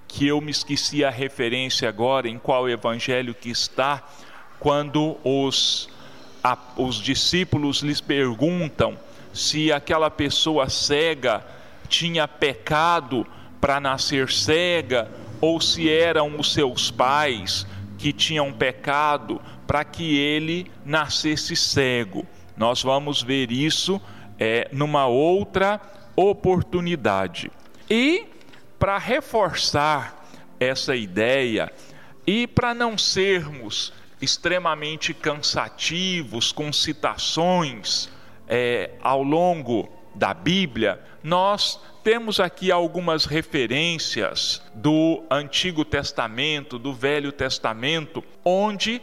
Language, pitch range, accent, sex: Portuguese, 135-175 Hz, Brazilian, male